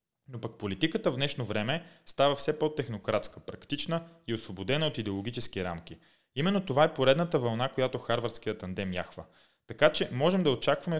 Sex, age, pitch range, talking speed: male, 30-49, 110-150 Hz, 160 wpm